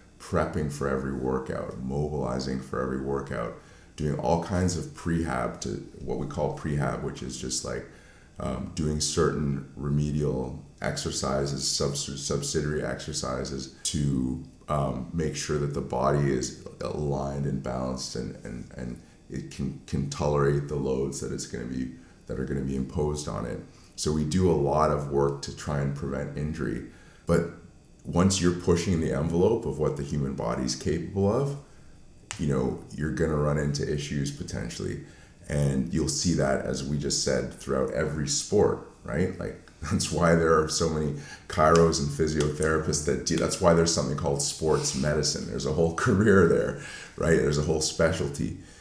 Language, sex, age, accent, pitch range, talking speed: English, male, 30-49, American, 70-85 Hz, 170 wpm